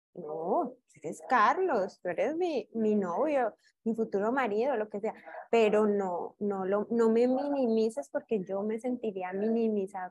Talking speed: 155 wpm